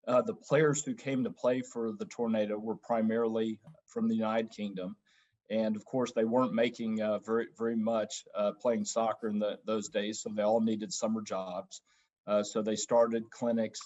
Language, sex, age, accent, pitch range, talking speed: English, male, 40-59, American, 105-115 Hz, 190 wpm